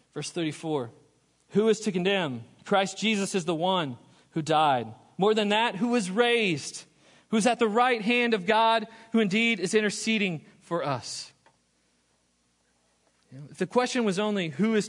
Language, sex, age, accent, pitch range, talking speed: English, male, 40-59, American, 140-195 Hz, 165 wpm